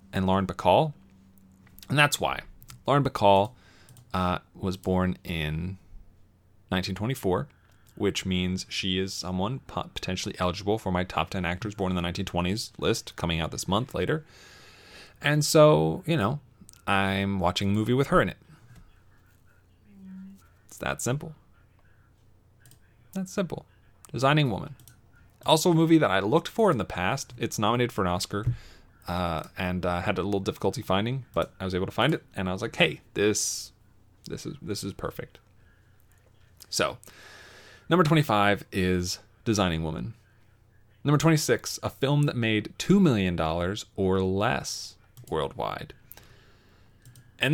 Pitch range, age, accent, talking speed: 95-120 Hz, 30-49, American, 145 wpm